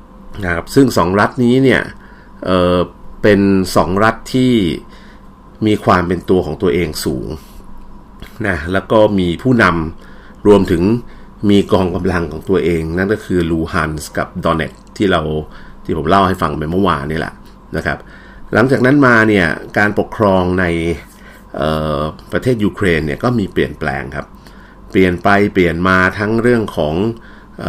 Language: Thai